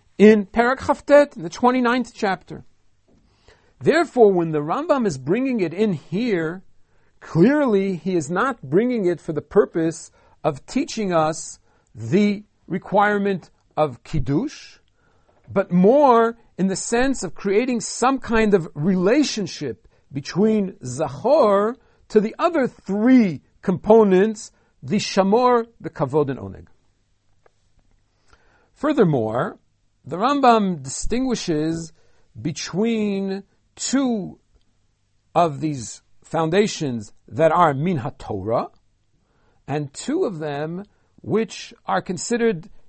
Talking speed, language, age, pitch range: 105 wpm, English, 50-69, 135-215 Hz